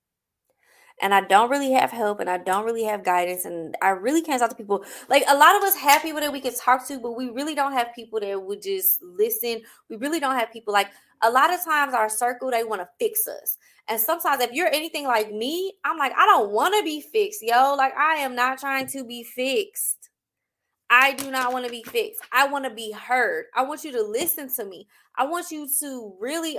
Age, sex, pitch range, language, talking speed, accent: 20-39, female, 235-310 Hz, English, 240 wpm, American